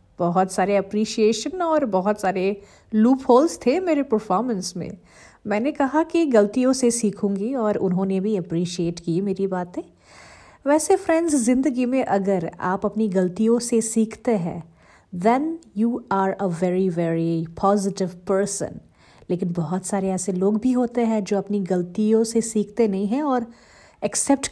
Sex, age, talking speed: female, 50-69, 145 wpm